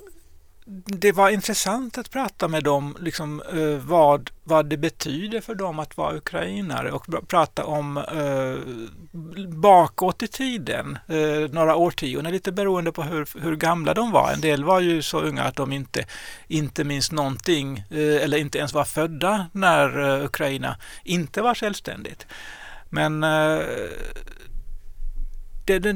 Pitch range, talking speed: 145-190 Hz, 145 wpm